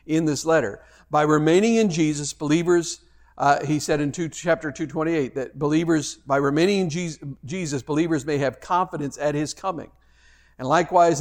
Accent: American